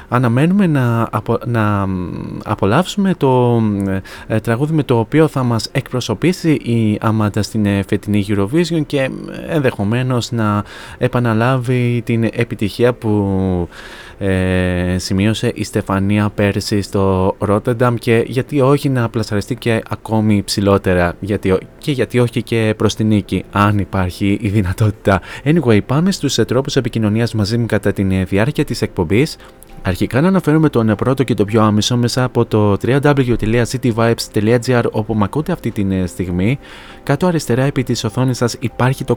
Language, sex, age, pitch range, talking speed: Greek, male, 20-39, 105-130 Hz, 140 wpm